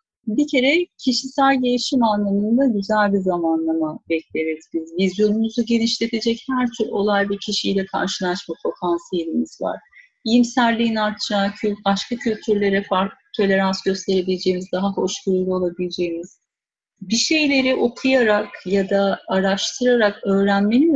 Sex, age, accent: female, 40-59, native